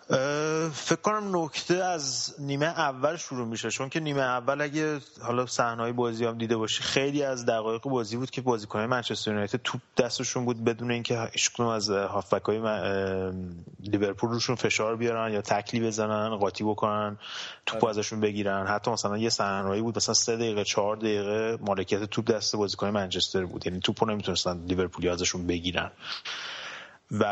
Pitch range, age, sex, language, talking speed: 100-120 Hz, 30-49, male, Persian, 155 wpm